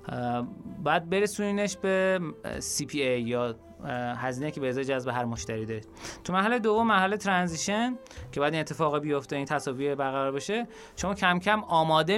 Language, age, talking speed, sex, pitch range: Persian, 30-49, 155 wpm, male, 130-205 Hz